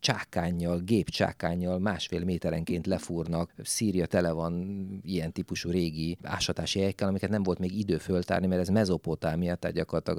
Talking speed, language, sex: 140 wpm, Hungarian, male